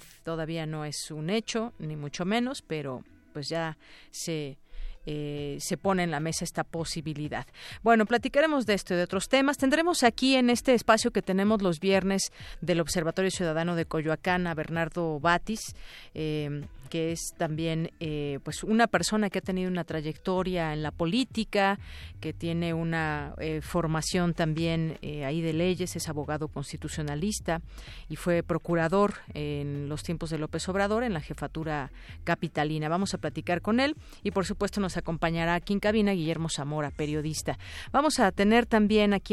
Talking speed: 165 wpm